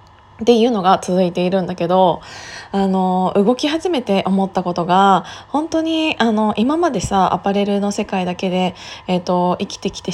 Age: 20-39